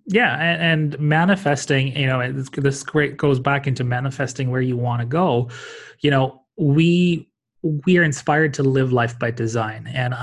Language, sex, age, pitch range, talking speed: English, male, 20-39, 125-150 Hz, 160 wpm